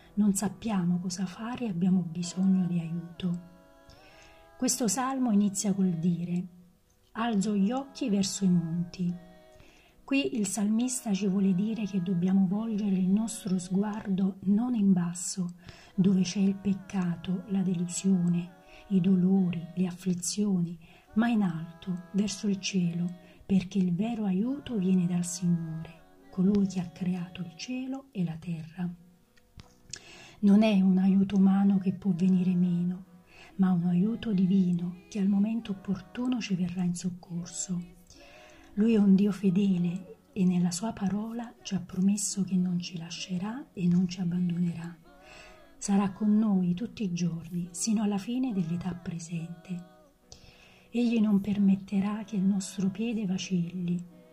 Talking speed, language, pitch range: 140 wpm, Italian, 175-205 Hz